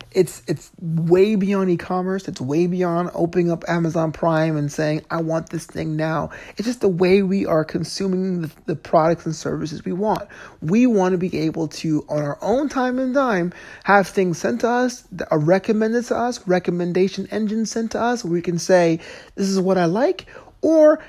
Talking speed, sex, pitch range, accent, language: 200 wpm, male, 160-200 Hz, American, English